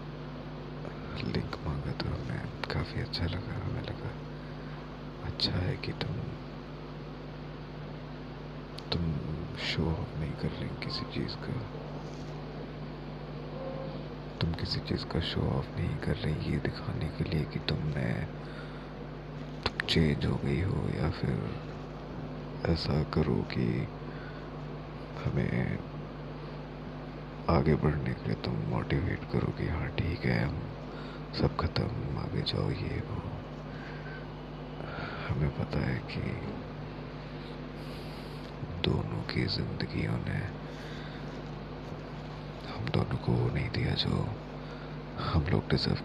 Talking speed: 105 wpm